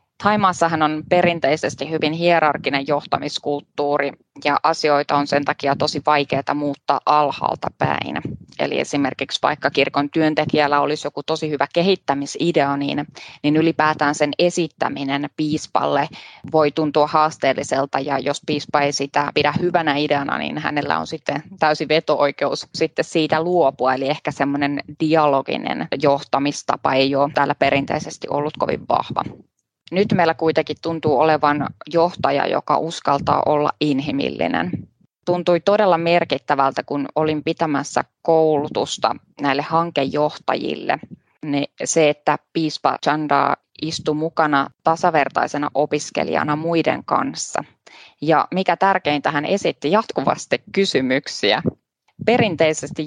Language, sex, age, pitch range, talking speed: Finnish, female, 20-39, 145-160 Hz, 115 wpm